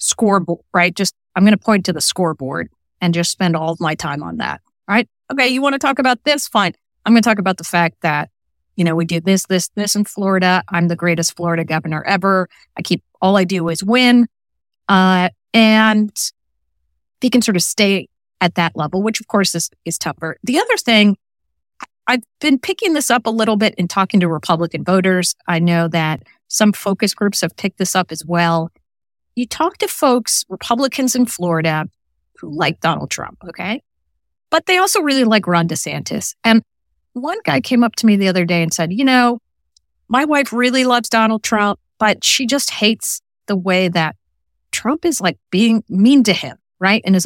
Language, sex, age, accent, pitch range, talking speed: English, female, 30-49, American, 165-220 Hz, 200 wpm